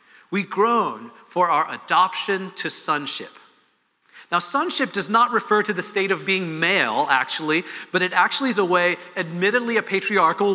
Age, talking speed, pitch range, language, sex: 40-59, 160 wpm, 160-205 Hz, English, male